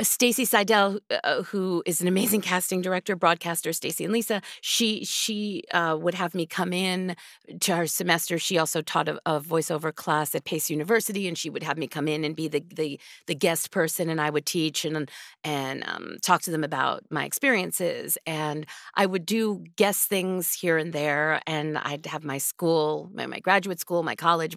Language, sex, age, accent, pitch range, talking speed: English, female, 40-59, American, 155-185 Hz, 195 wpm